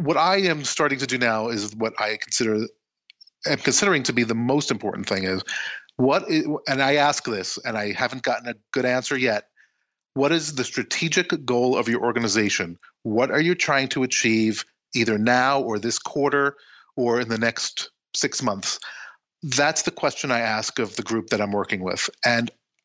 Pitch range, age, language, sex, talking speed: 115-145 Hz, 40-59, English, male, 185 wpm